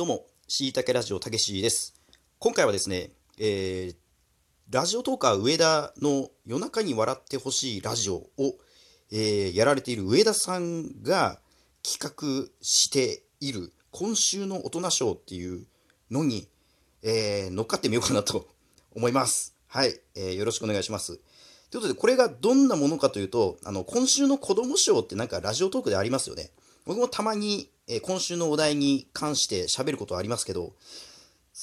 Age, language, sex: 40-59, Japanese, male